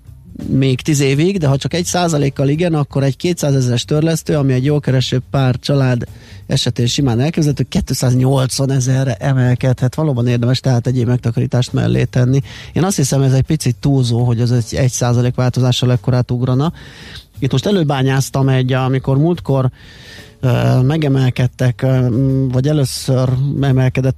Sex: male